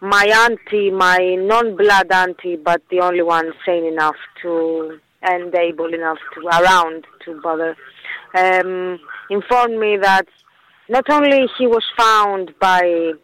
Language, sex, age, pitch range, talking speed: English, female, 20-39, 170-215 Hz, 130 wpm